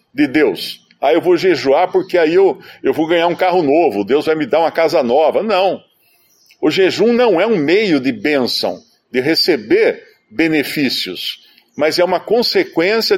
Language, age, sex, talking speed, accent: Portuguese, 50-69, male, 175 wpm, Brazilian